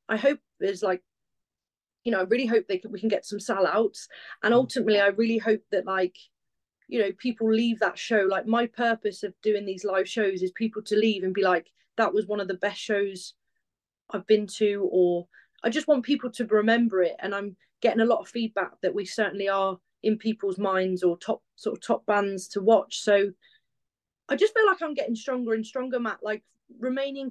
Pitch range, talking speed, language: 205-240 Hz, 215 wpm, English